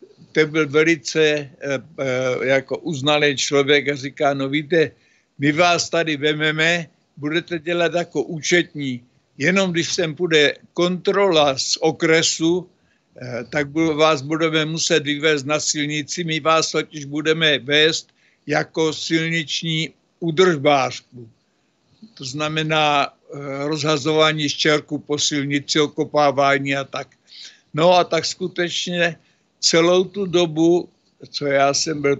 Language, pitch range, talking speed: Czech, 145-170 Hz, 120 wpm